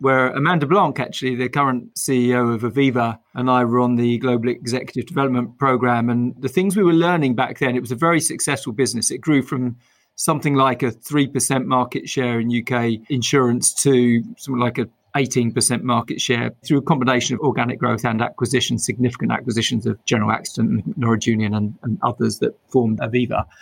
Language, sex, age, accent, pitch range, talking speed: English, male, 40-59, British, 120-135 Hz, 185 wpm